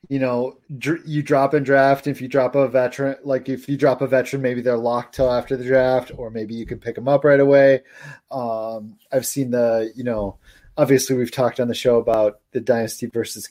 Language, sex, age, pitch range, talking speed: English, male, 30-49, 120-145 Hz, 220 wpm